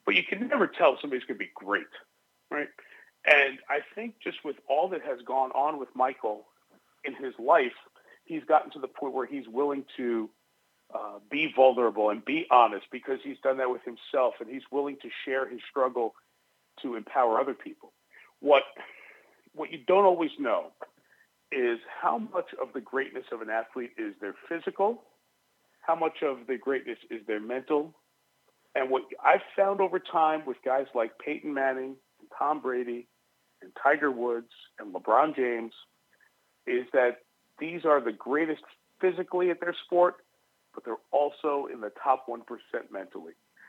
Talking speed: 170 wpm